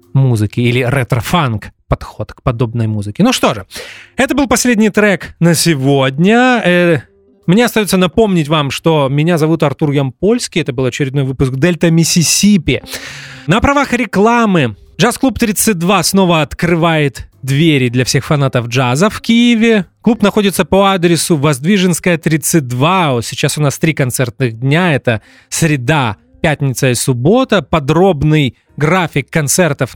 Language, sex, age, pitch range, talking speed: English, male, 20-39, 130-180 Hz, 130 wpm